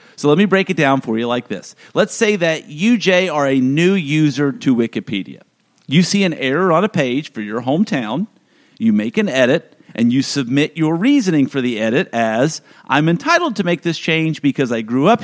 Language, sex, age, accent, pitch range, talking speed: English, male, 50-69, American, 135-220 Hz, 215 wpm